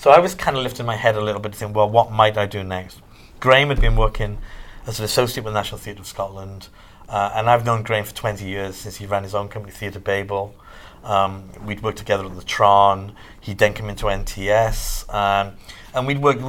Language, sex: English, male